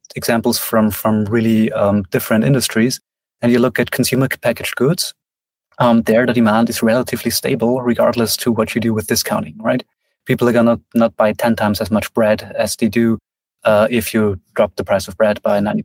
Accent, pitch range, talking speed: German, 105-120 Hz, 195 wpm